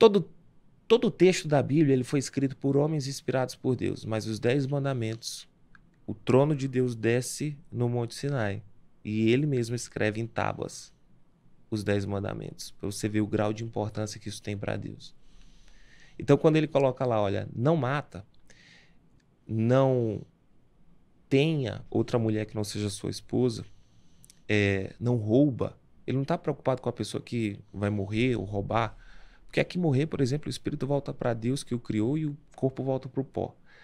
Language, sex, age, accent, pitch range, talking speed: Portuguese, male, 20-39, Brazilian, 110-140 Hz, 170 wpm